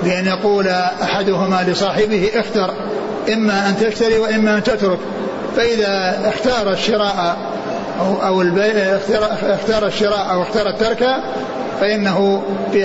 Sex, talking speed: male, 105 wpm